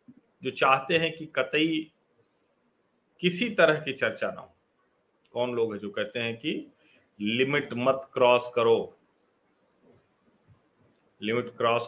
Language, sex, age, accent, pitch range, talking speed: Hindi, male, 40-59, native, 120-190 Hz, 120 wpm